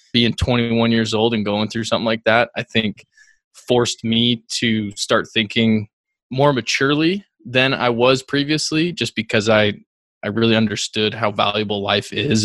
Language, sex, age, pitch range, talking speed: English, male, 20-39, 105-120 Hz, 160 wpm